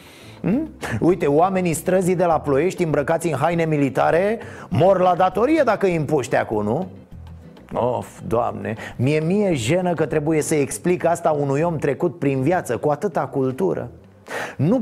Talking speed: 155 wpm